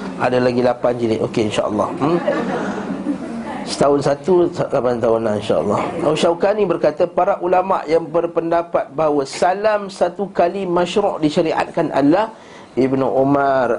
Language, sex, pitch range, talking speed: Malay, male, 130-175 Hz, 115 wpm